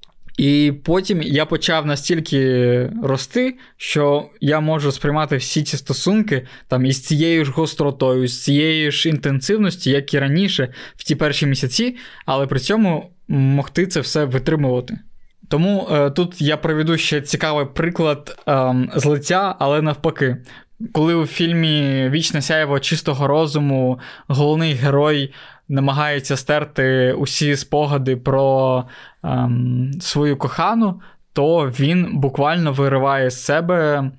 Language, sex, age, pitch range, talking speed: Ukrainian, male, 20-39, 135-160 Hz, 130 wpm